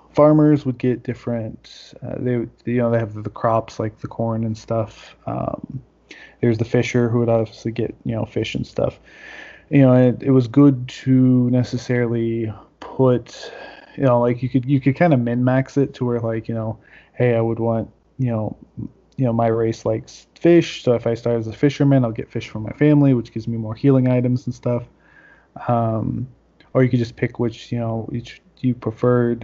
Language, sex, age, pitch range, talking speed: English, male, 20-39, 115-130 Hz, 205 wpm